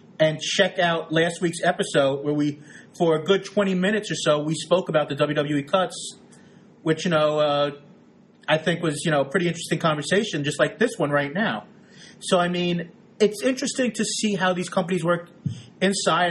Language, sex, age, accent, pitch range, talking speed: English, male, 30-49, American, 155-195 Hz, 190 wpm